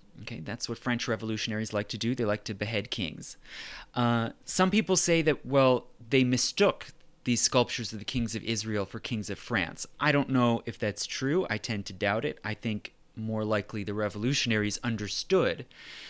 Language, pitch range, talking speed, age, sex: English, 110-140 Hz, 185 wpm, 30-49, male